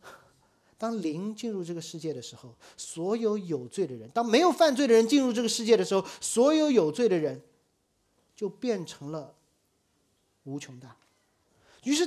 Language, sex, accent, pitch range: Chinese, male, native, 165-250 Hz